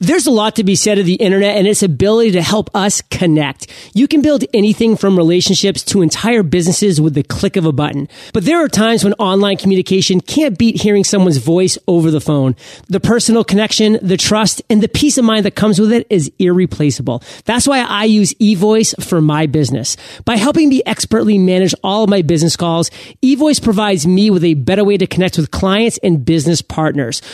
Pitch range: 165-220 Hz